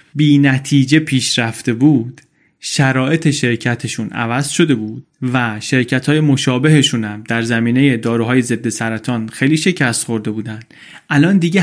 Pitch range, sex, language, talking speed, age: 120-155 Hz, male, Persian, 125 wpm, 30-49